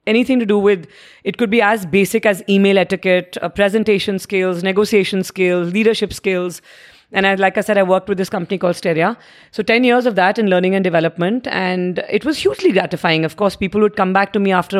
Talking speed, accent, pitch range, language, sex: 215 wpm, Indian, 190-235 Hz, English, female